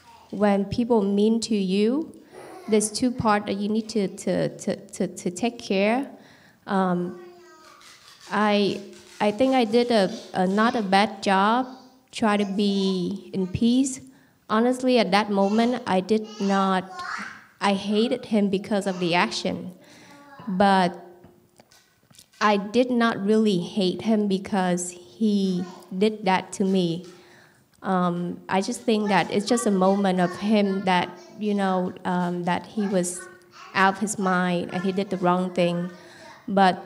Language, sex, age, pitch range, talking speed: English, female, 20-39, 185-220 Hz, 150 wpm